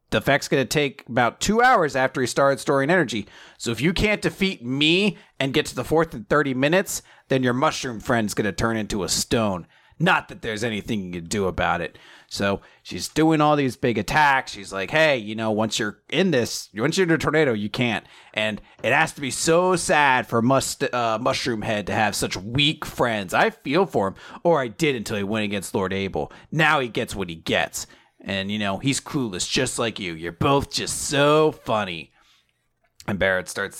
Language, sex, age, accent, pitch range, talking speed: English, male, 30-49, American, 100-150 Hz, 215 wpm